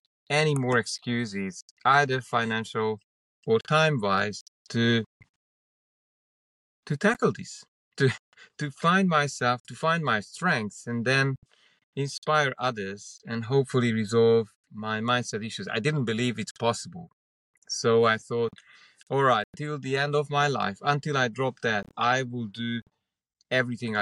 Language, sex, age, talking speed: English, male, 30-49, 130 wpm